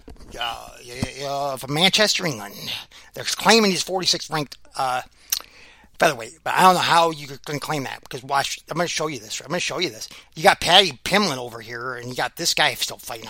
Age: 30-49